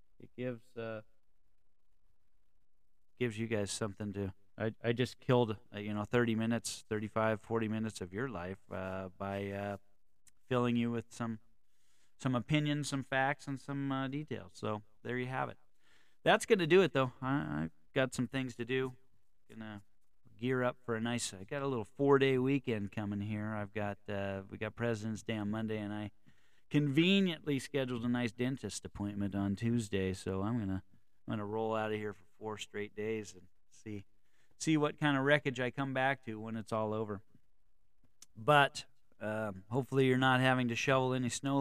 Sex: male